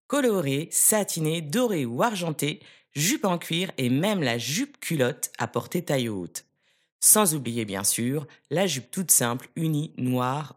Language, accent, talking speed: French, French, 155 wpm